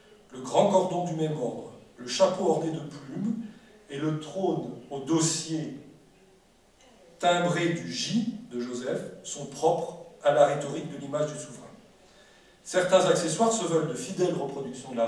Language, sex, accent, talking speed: English, male, French, 155 wpm